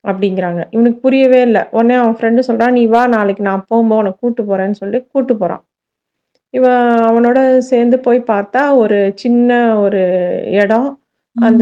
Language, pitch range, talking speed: Tamil, 205-245 Hz, 145 wpm